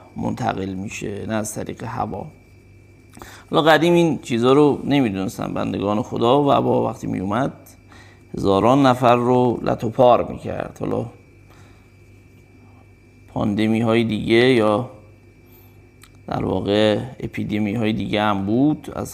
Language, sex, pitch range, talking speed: Persian, male, 100-120 Hz, 115 wpm